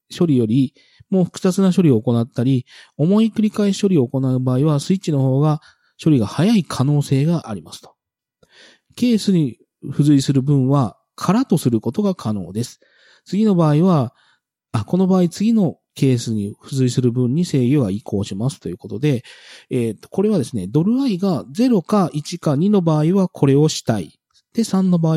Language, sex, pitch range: Japanese, male, 125-185 Hz